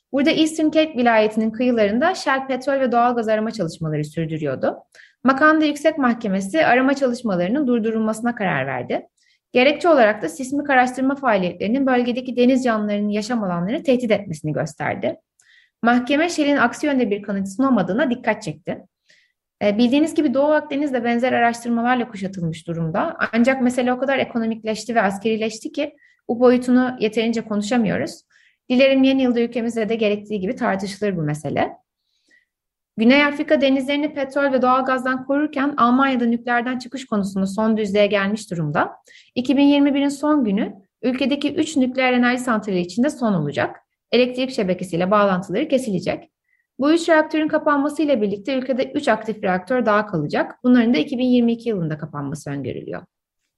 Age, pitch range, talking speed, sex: 30-49, 210-275 Hz, 135 wpm, female